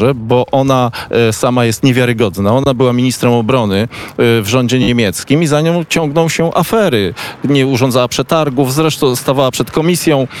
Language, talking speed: Polish, 145 wpm